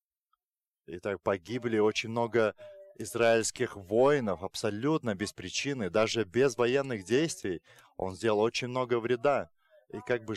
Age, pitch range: 30-49, 105-140 Hz